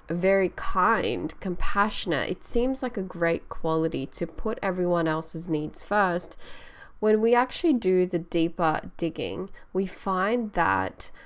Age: 10-29